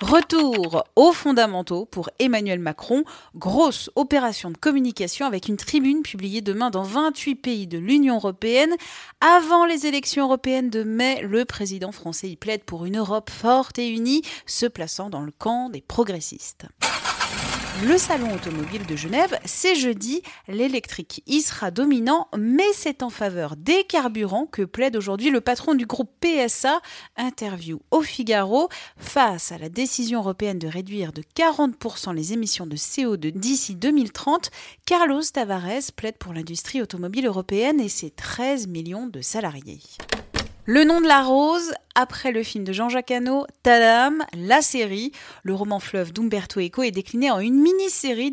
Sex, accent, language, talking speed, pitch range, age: female, French, French, 155 wpm, 200-285 Hz, 30-49